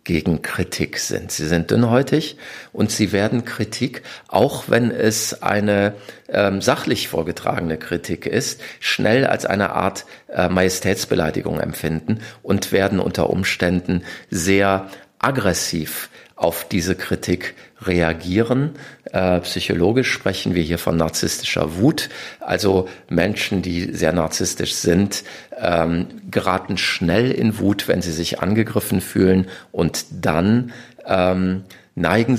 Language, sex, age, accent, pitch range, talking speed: German, male, 50-69, German, 95-115 Hz, 120 wpm